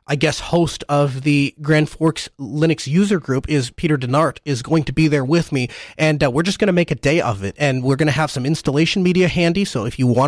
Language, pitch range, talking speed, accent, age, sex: English, 140-170 Hz, 255 wpm, American, 30-49, male